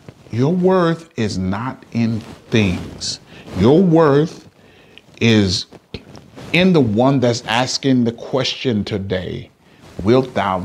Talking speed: 105 wpm